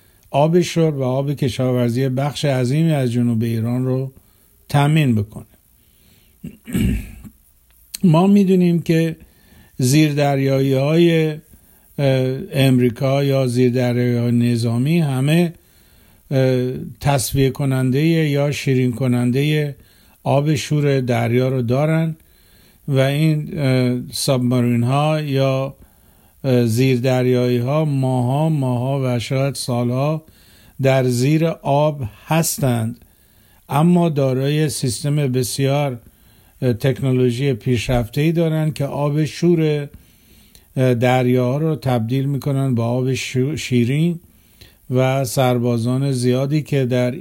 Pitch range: 125-145 Hz